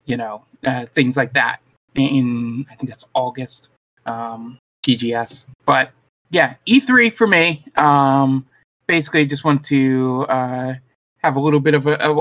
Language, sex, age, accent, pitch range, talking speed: English, male, 20-39, American, 130-150 Hz, 145 wpm